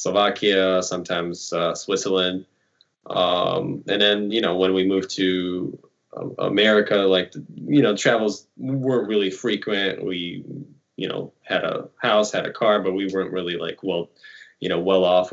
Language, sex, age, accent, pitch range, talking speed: English, male, 20-39, American, 90-105 Hz, 155 wpm